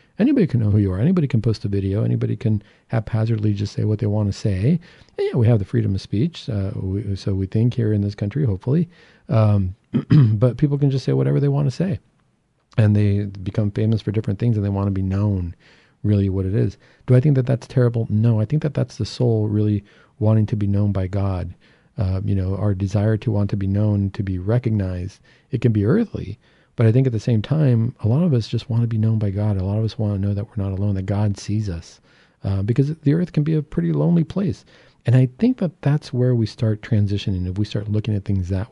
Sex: male